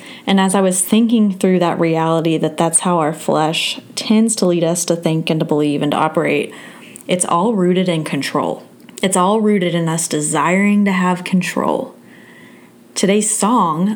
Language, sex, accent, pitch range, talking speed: English, female, American, 165-190 Hz, 175 wpm